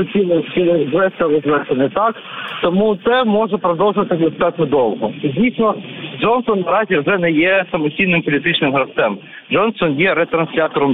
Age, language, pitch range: 40-59, Ukrainian, 160-205 Hz